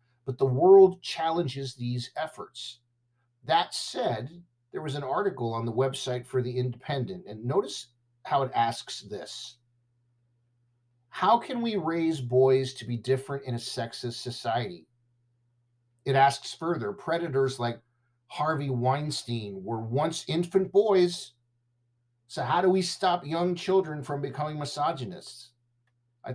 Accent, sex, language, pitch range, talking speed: American, male, English, 120-145 Hz, 130 wpm